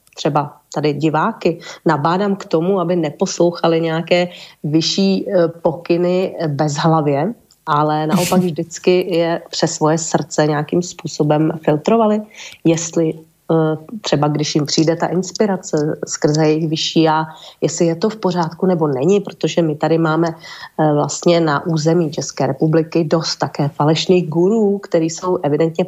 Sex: female